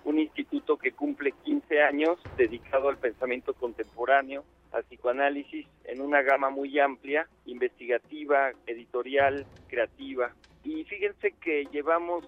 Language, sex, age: Spanish, male, 50-69